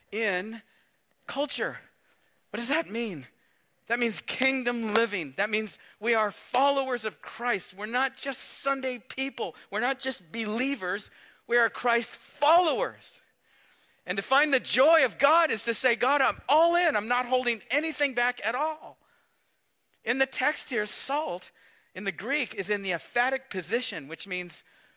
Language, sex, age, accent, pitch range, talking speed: English, male, 50-69, American, 205-265 Hz, 160 wpm